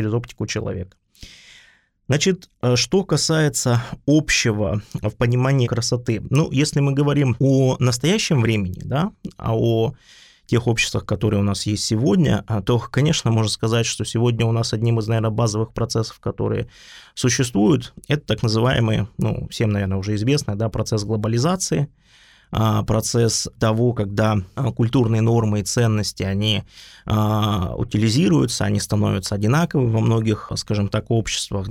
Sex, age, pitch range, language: male, 20-39, 105-125 Hz, Russian